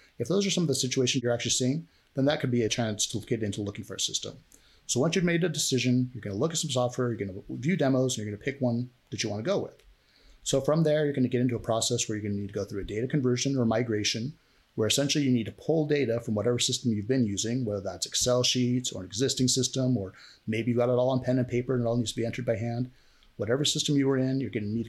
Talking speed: 300 wpm